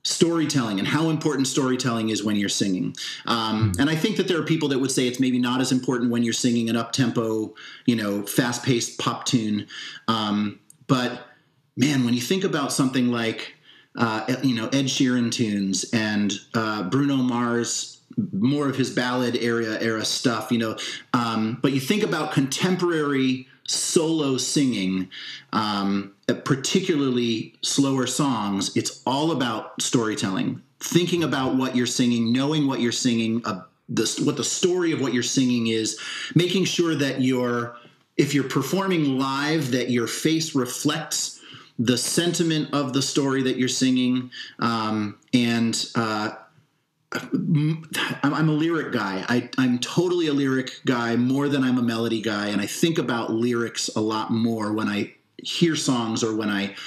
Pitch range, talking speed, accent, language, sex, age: 115-145 Hz, 160 wpm, American, English, male, 30-49